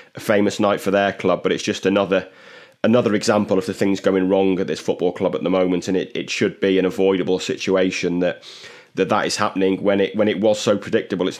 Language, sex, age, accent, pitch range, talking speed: English, male, 20-39, British, 95-105 Hz, 235 wpm